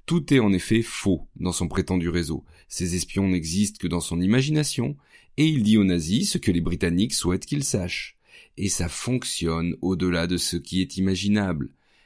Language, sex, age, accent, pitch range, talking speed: French, male, 40-59, French, 90-120 Hz, 185 wpm